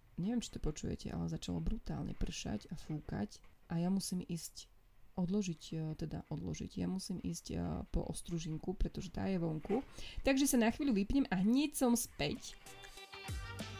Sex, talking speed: female, 150 wpm